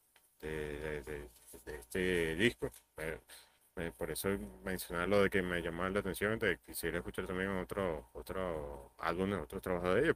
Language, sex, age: Spanish, male, 30-49